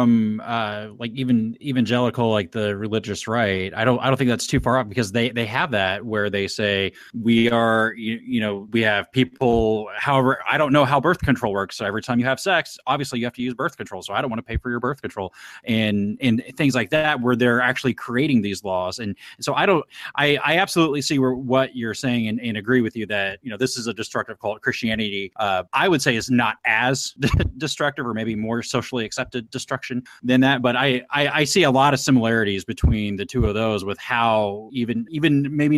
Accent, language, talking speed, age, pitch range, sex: American, English, 230 wpm, 20-39, 105-130 Hz, male